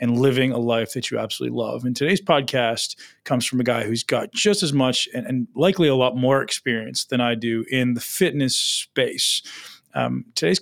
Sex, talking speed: male, 205 wpm